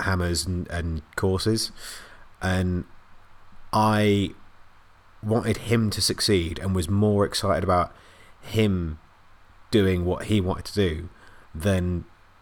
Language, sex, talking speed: English, male, 110 wpm